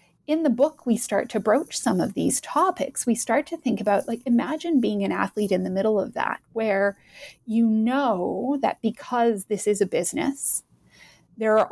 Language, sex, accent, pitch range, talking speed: English, female, American, 210-255 Hz, 190 wpm